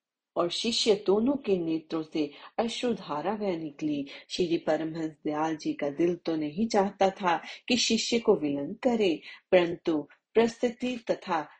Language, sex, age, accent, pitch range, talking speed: Hindi, female, 40-59, native, 160-210 Hz, 135 wpm